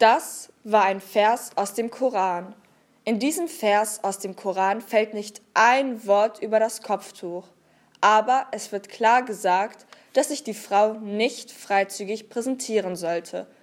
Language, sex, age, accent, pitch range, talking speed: German, female, 20-39, German, 200-245 Hz, 145 wpm